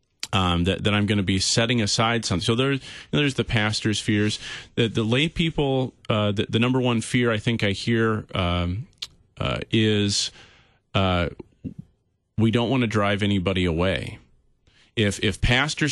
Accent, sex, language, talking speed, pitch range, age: American, male, English, 175 wpm, 95-120 Hz, 40-59